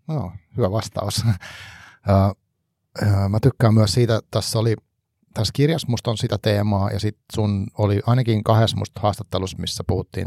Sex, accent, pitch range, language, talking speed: male, native, 95-115 Hz, Finnish, 145 wpm